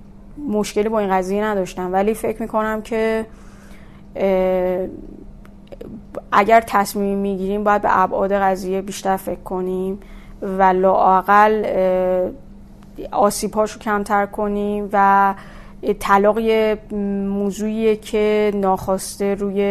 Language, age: Persian, 30-49